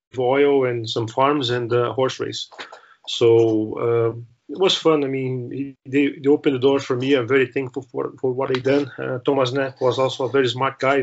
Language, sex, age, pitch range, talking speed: English, male, 30-49, 125-140 Hz, 205 wpm